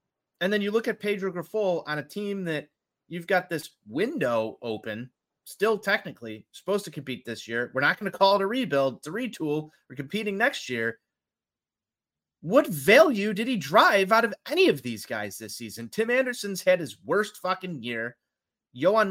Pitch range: 125-185 Hz